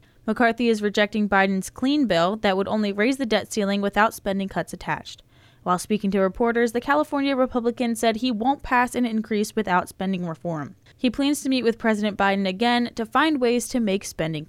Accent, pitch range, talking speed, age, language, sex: American, 185-240 Hz, 195 wpm, 10-29, English, female